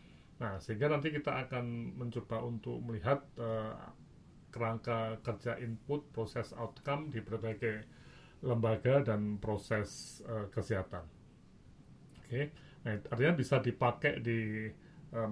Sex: male